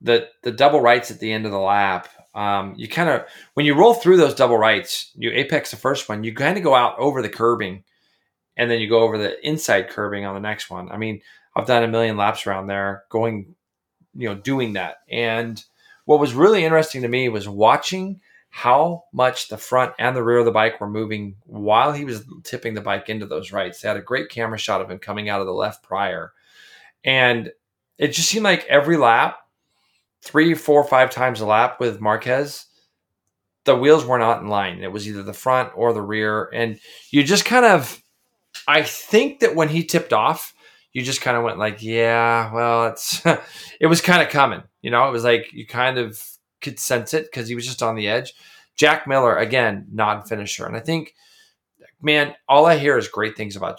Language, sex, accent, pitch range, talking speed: English, male, American, 105-140 Hz, 215 wpm